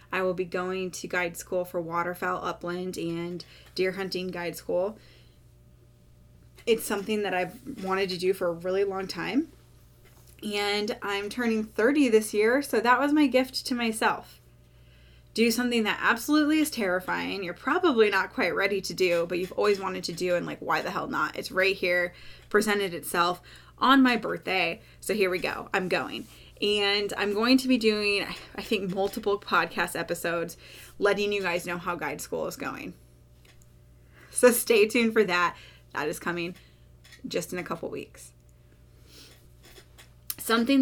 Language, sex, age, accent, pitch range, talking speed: English, female, 10-29, American, 175-230 Hz, 165 wpm